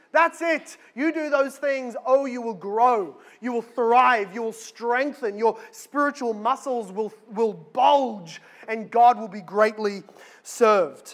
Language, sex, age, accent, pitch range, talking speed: English, male, 20-39, Australian, 220-275 Hz, 150 wpm